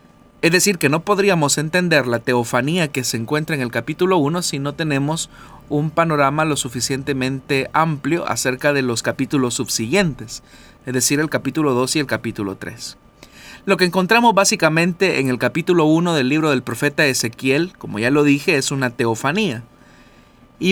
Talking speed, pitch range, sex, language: 170 wpm, 130-165 Hz, male, Spanish